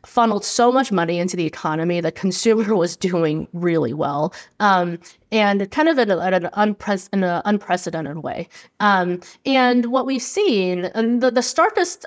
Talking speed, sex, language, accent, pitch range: 160 wpm, female, English, American, 175-225 Hz